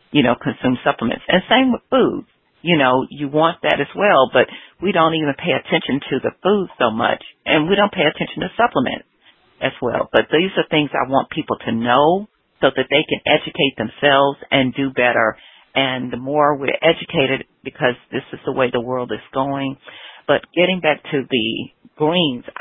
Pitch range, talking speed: 125-155 Hz, 195 wpm